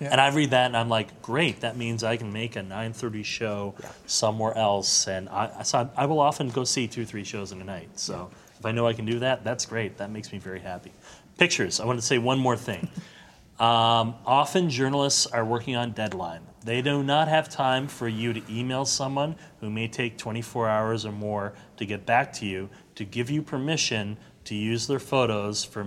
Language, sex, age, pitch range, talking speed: English, male, 30-49, 110-140 Hz, 215 wpm